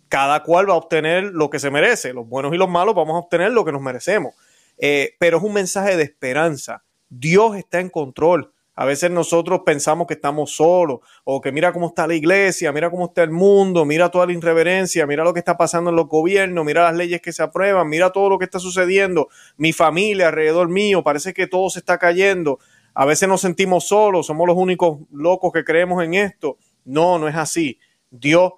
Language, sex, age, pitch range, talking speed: Spanish, male, 30-49, 145-180 Hz, 215 wpm